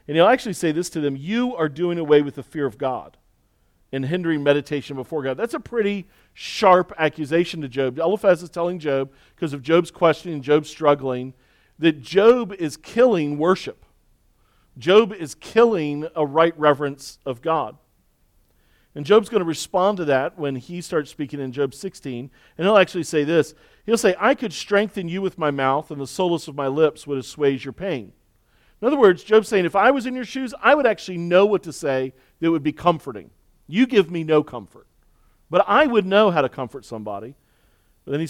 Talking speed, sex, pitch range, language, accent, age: 200 wpm, male, 140-185 Hz, English, American, 40-59